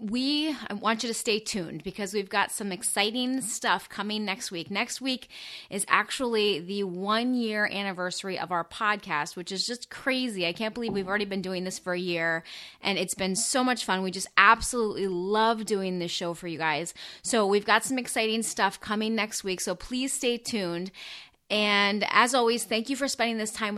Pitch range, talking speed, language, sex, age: 185-230 Hz, 195 wpm, English, female, 30-49